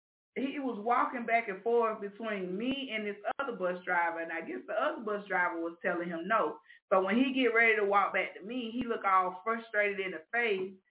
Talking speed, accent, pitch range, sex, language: 225 wpm, American, 195-260 Hz, female, English